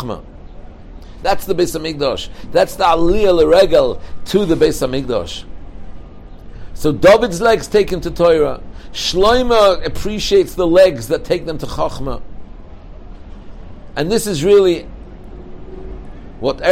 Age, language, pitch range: 60-79, English, 130-210 Hz